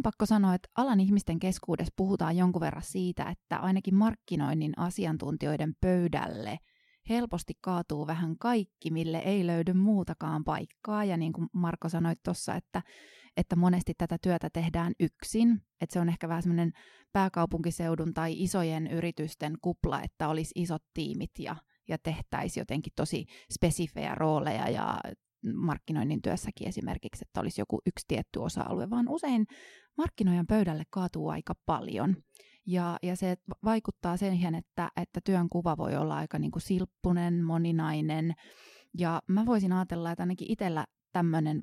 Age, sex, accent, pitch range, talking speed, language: 20-39, female, native, 165-195 Hz, 140 wpm, Finnish